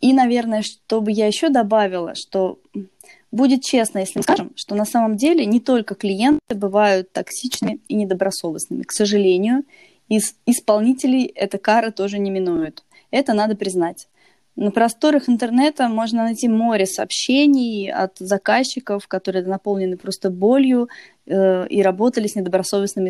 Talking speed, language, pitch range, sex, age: 135 wpm, Russian, 195-240 Hz, female, 20-39